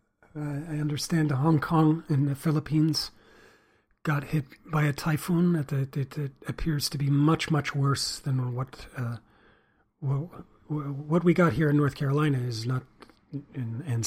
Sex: male